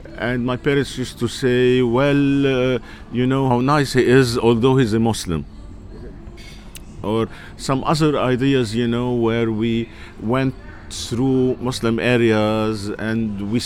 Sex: male